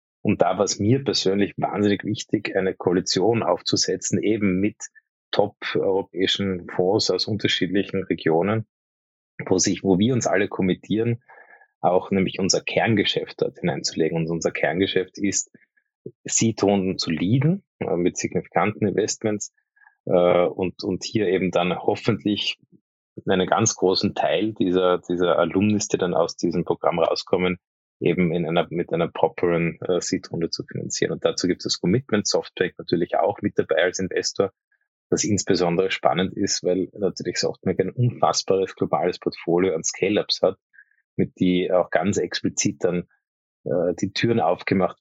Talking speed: 145 wpm